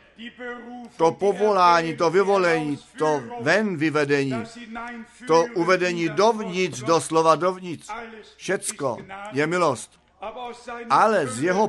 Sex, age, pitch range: male, 50-69, 150-215 Hz